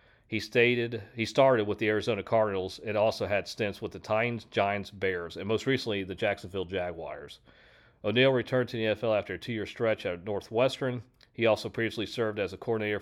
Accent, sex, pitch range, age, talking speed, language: American, male, 100-120 Hz, 40-59, 190 wpm, English